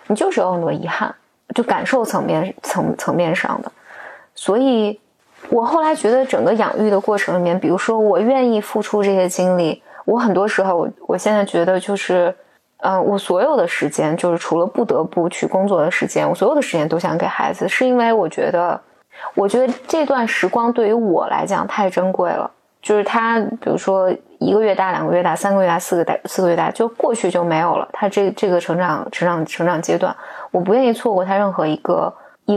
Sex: female